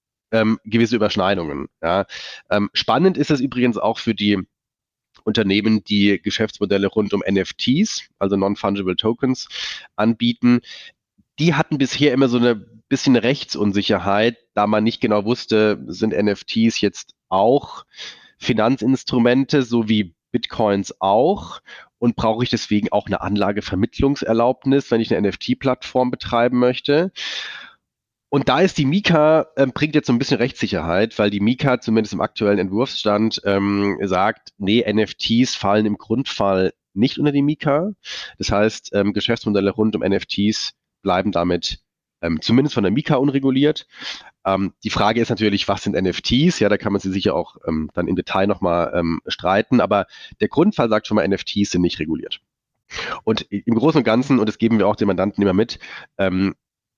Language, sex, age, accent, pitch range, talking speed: German, male, 30-49, German, 100-125 Hz, 155 wpm